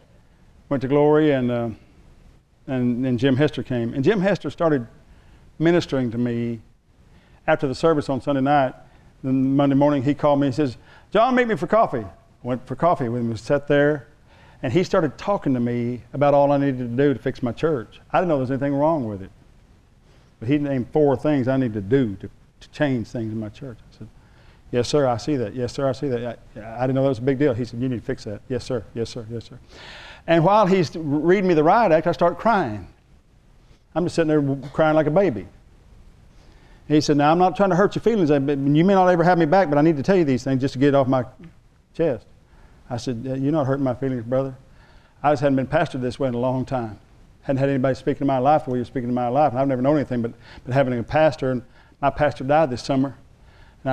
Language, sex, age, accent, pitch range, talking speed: English, male, 50-69, American, 125-150 Hz, 245 wpm